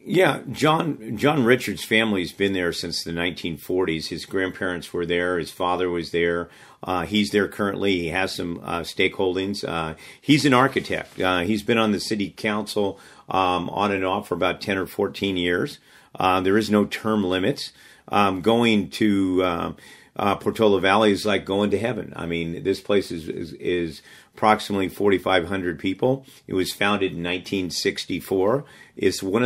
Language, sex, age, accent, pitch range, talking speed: English, male, 50-69, American, 90-105 Hz, 170 wpm